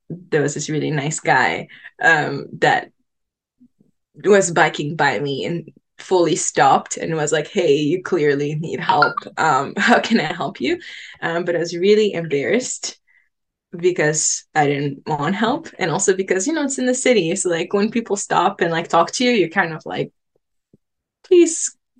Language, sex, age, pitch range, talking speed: English, female, 10-29, 185-275 Hz, 175 wpm